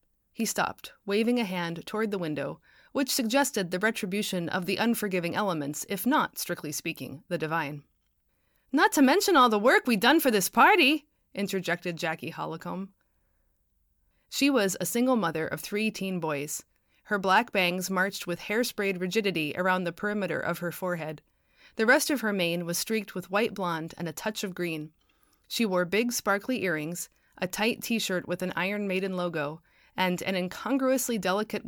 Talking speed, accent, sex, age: 170 wpm, American, female, 30-49